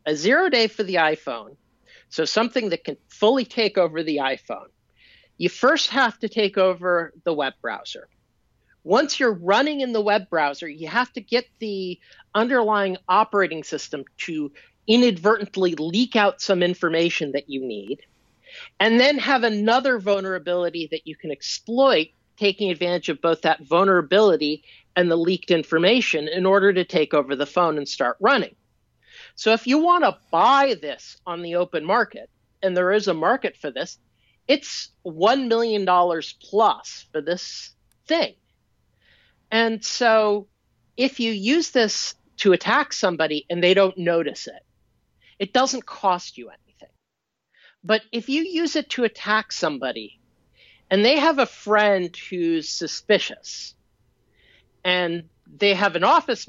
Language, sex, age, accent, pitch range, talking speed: English, male, 40-59, American, 170-235 Hz, 150 wpm